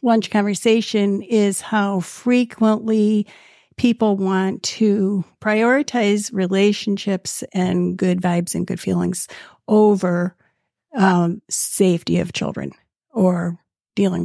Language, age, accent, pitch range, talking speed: English, 50-69, American, 190-215 Hz, 95 wpm